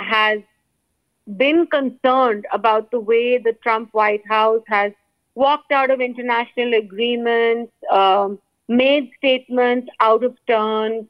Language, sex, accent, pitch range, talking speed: English, female, Indian, 220-280 Hz, 125 wpm